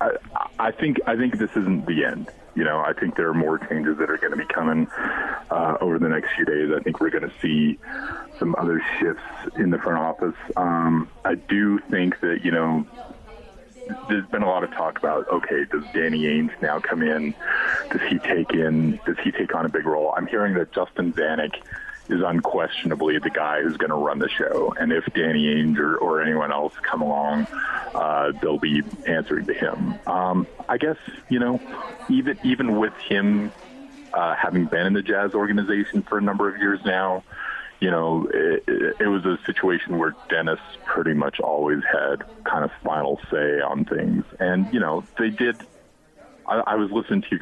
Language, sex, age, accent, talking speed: English, male, 30-49, American, 200 wpm